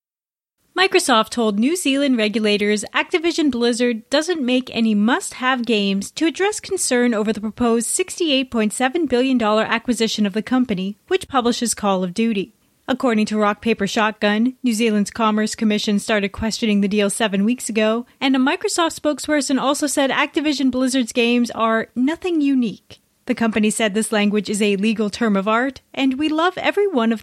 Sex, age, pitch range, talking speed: female, 30-49, 210-265 Hz, 165 wpm